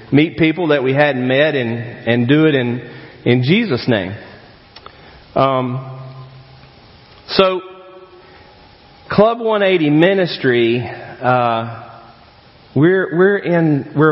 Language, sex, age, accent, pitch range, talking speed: English, male, 40-59, American, 115-150 Hz, 115 wpm